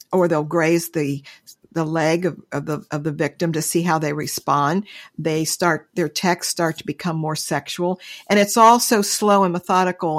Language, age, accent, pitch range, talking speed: English, 50-69, American, 155-190 Hz, 195 wpm